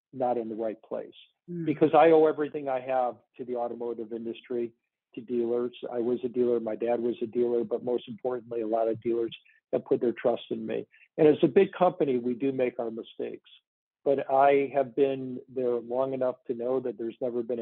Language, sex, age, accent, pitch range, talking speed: English, male, 50-69, American, 115-130 Hz, 210 wpm